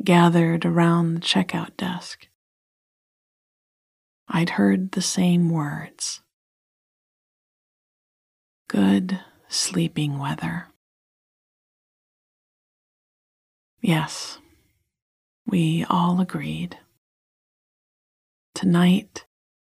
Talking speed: 55 wpm